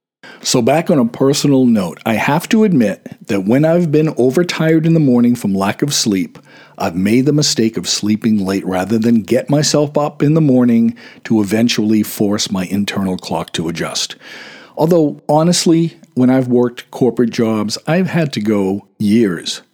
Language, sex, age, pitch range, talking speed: English, male, 50-69, 100-140 Hz, 175 wpm